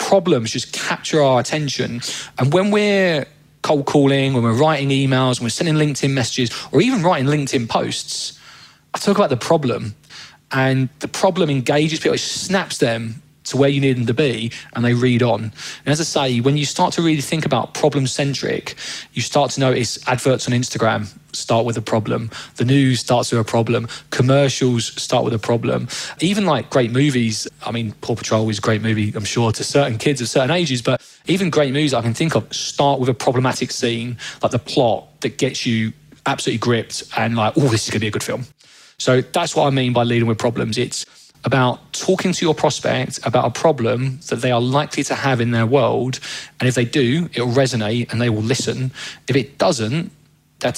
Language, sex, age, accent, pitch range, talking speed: English, male, 20-39, British, 120-150 Hz, 205 wpm